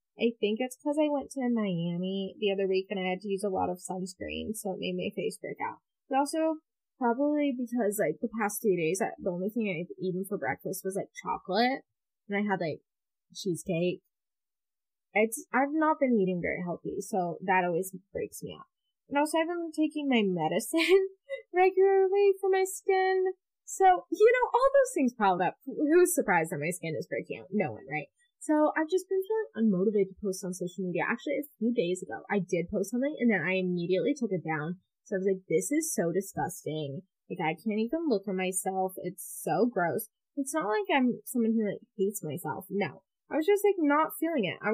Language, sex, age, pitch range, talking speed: English, female, 10-29, 190-290 Hz, 210 wpm